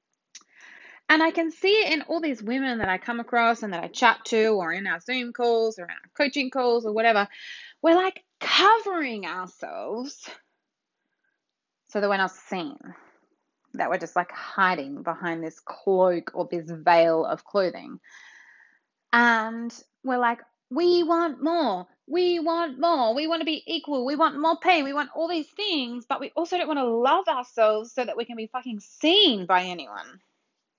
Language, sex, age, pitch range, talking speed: English, female, 20-39, 200-310 Hz, 180 wpm